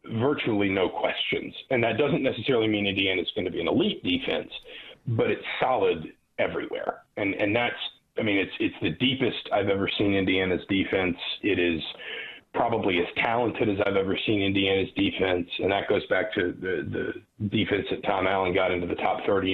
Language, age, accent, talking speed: English, 40-59, American, 185 wpm